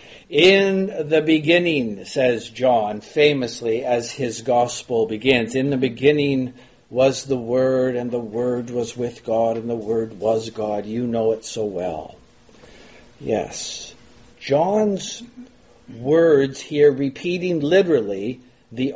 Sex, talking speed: male, 125 wpm